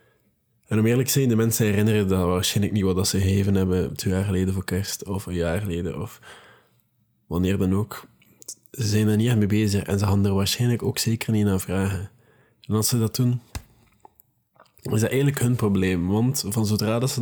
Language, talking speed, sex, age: Dutch, 205 wpm, male, 20-39